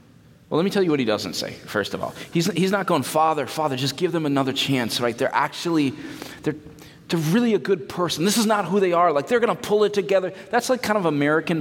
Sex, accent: male, American